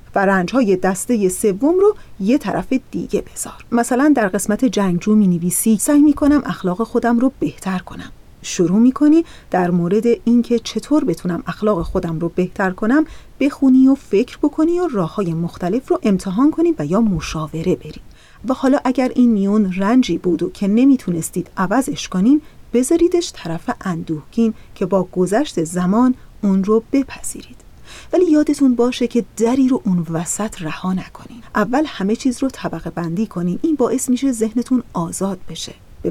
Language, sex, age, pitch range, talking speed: Persian, female, 40-59, 185-265 Hz, 155 wpm